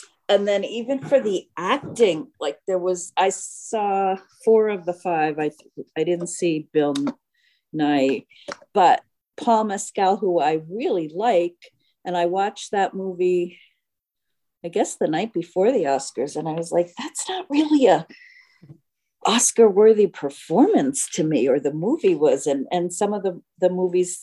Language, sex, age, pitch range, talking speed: English, female, 50-69, 180-255 Hz, 155 wpm